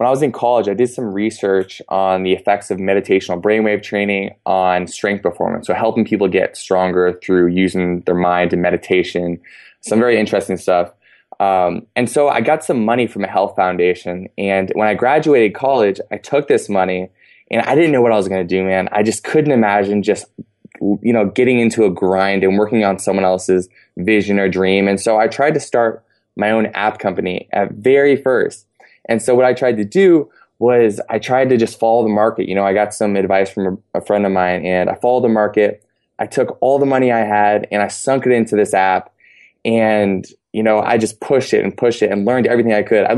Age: 20-39